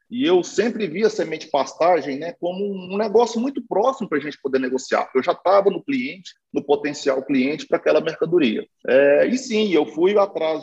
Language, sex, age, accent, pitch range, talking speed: Portuguese, male, 40-59, Brazilian, 165-250 Hz, 185 wpm